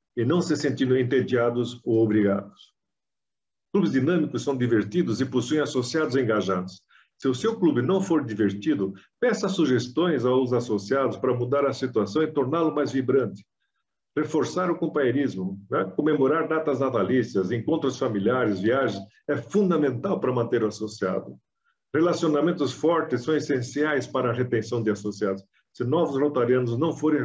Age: 50-69